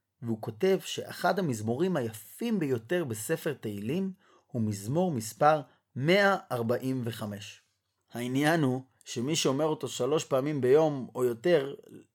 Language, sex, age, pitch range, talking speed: Hebrew, male, 30-49, 110-160 Hz, 110 wpm